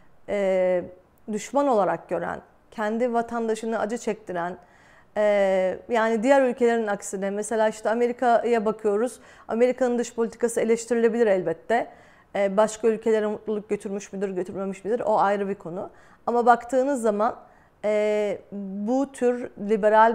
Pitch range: 205-255 Hz